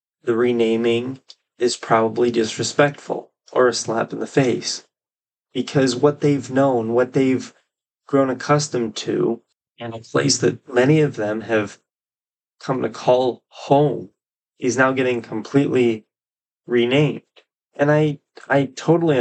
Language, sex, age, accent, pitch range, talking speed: English, male, 20-39, American, 115-130 Hz, 130 wpm